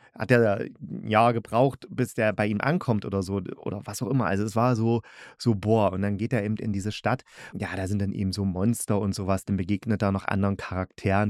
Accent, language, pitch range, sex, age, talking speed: German, German, 100-120 Hz, male, 30-49, 245 wpm